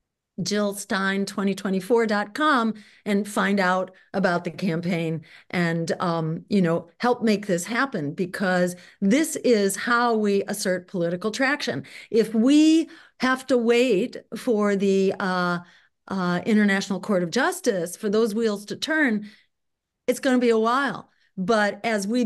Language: English